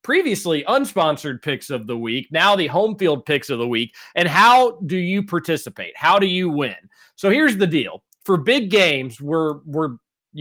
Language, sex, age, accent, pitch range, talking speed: English, male, 40-59, American, 145-190 Hz, 190 wpm